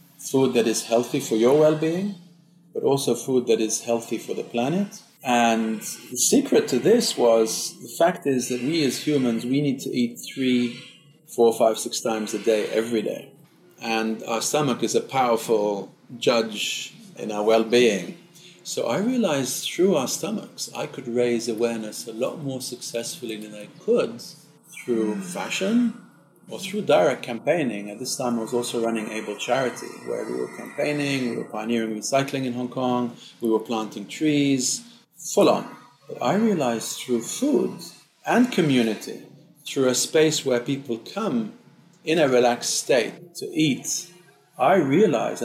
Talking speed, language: 160 wpm, English